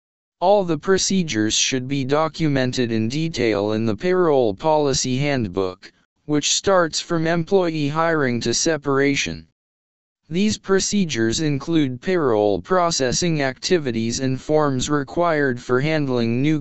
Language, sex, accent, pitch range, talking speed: English, male, American, 115-165 Hz, 115 wpm